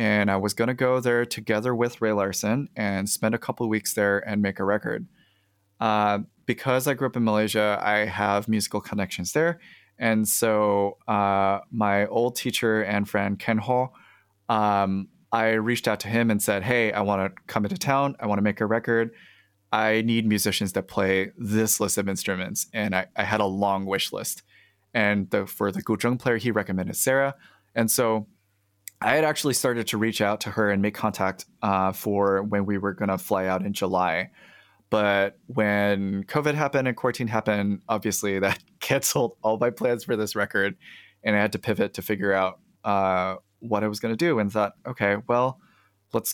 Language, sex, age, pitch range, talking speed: English, male, 20-39, 100-115 Hz, 195 wpm